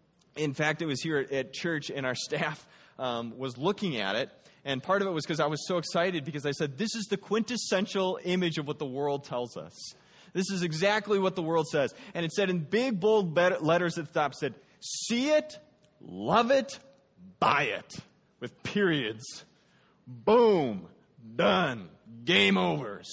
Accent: American